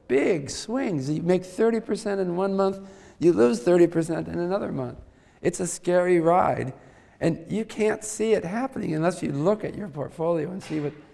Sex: male